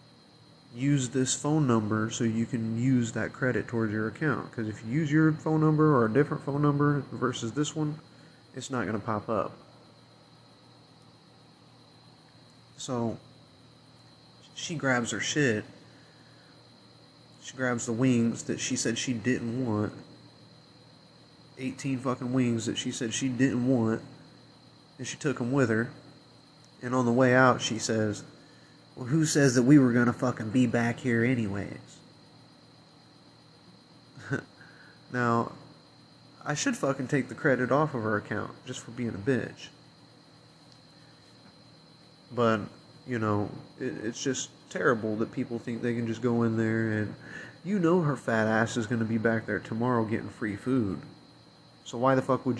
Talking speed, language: 155 wpm, English